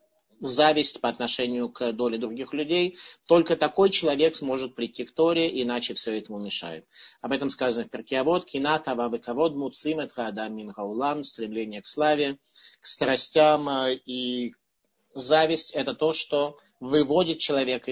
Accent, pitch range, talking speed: native, 120-155 Hz, 120 wpm